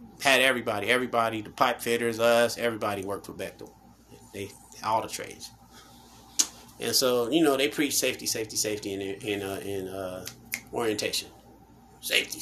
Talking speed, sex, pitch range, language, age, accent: 155 wpm, male, 110-165 Hz, English, 30-49, American